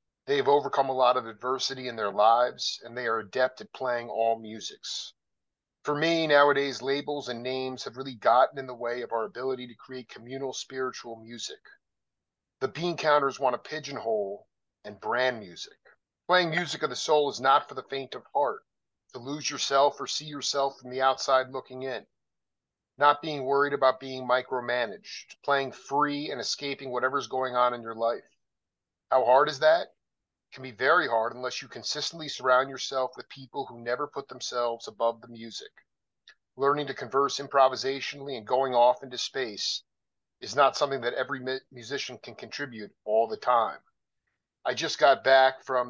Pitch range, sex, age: 125-145 Hz, male, 40-59